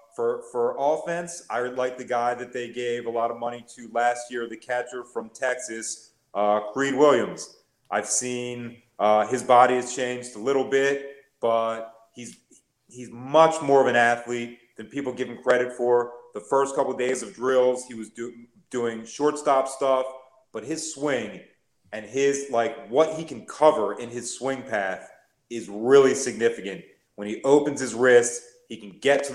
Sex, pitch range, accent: male, 115-130 Hz, American